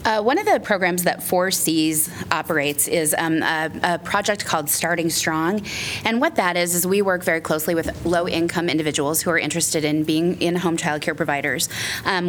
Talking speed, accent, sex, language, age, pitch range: 185 wpm, American, female, English, 20-39, 155-175 Hz